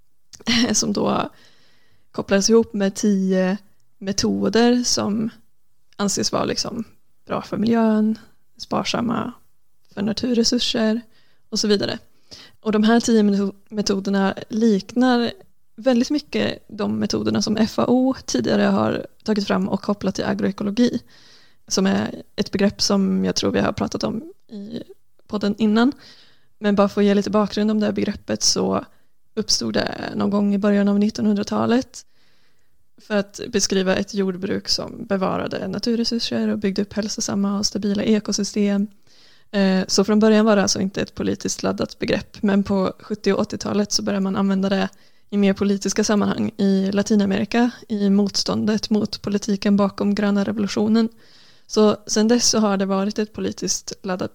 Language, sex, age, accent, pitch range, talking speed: Swedish, female, 20-39, native, 200-220 Hz, 145 wpm